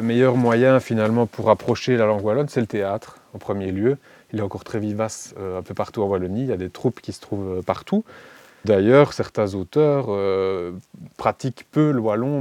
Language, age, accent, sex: French, 20-39, French, male